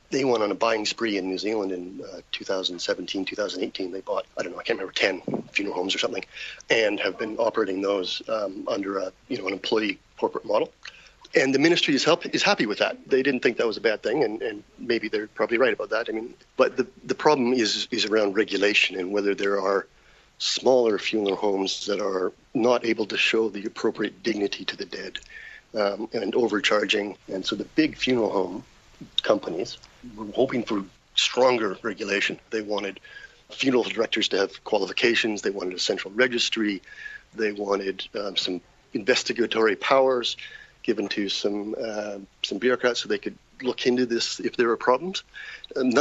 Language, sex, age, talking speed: English, male, 40-59, 190 wpm